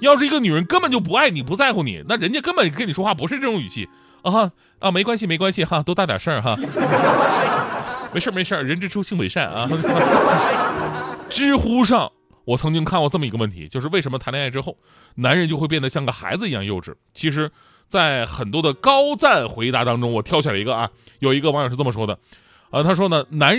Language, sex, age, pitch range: Chinese, male, 30-49, 125-205 Hz